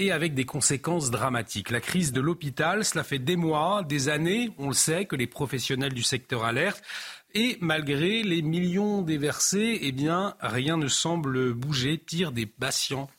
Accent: French